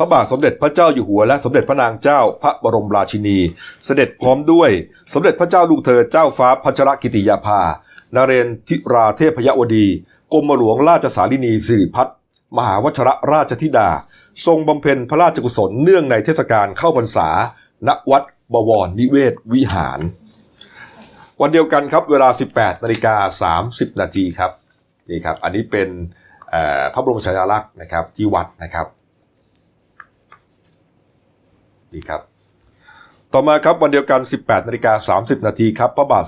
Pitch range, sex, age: 105-140 Hz, male, 30-49